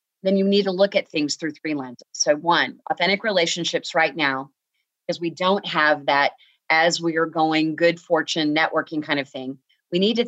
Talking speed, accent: 200 wpm, American